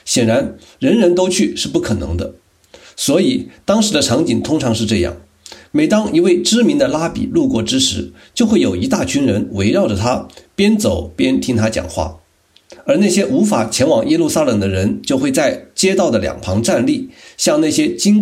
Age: 50-69